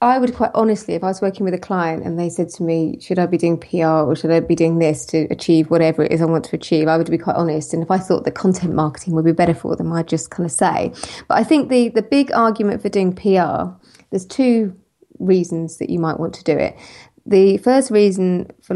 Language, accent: English, British